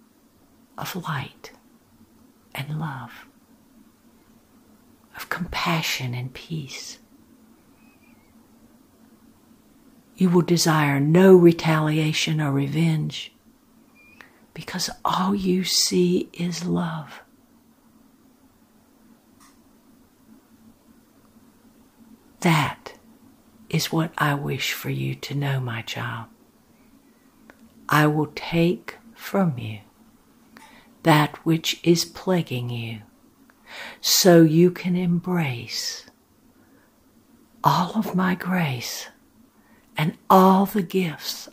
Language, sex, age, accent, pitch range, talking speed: English, female, 60-79, American, 155-245 Hz, 80 wpm